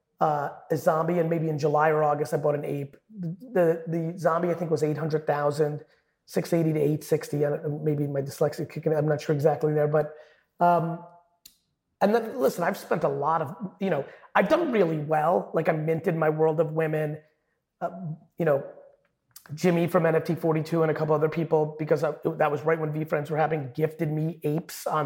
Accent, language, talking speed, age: American, English, 200 wpm, 30-49